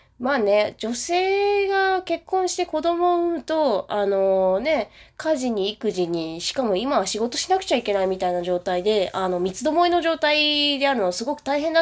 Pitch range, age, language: 180-300 Hz, 20-39, Japanese